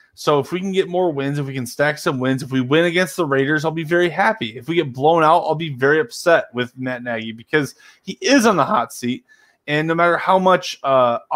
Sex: male